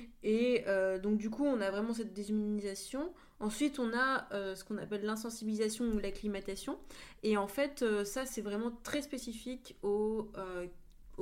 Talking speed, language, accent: 165 wpm, French, French